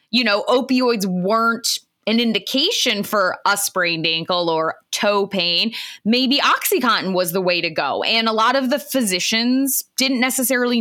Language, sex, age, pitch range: English, female, 20-39, 190-250 Hz